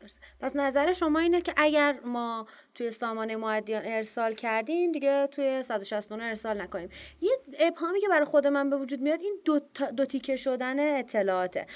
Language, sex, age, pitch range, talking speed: Persian, female, 30-49, 210-270 Hz, 165 wpm